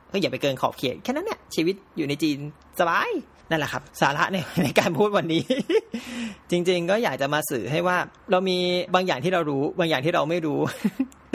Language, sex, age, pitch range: Thai, male, 20-39, 155-190 Hz